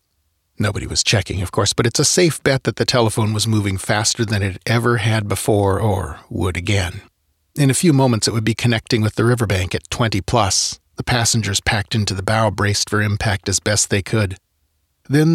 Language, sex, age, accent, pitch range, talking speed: English, male, 40-59, American, 95-125 Hz, 205 wpm